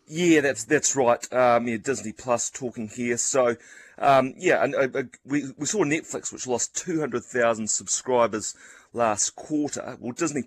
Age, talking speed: 30-49, 155 wpm